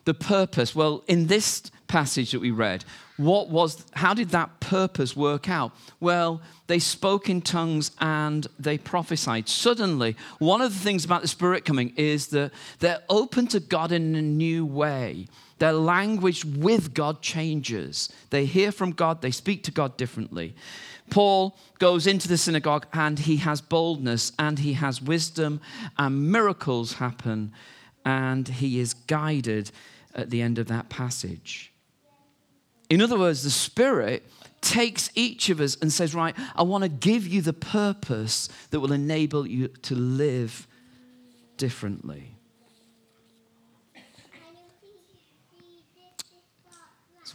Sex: male